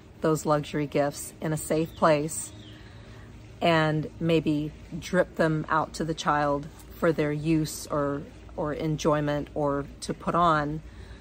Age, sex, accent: 40-59, female, American